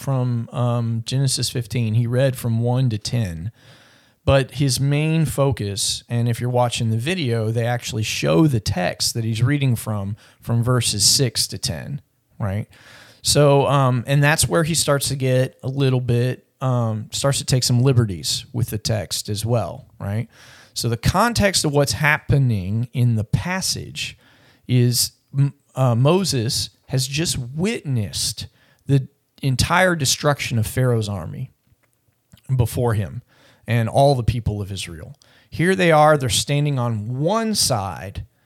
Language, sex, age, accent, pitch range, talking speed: English, male, 40-59, American, 115-135 Hz, 150 wpm